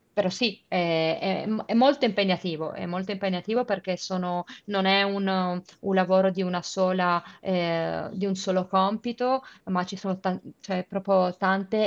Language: Italian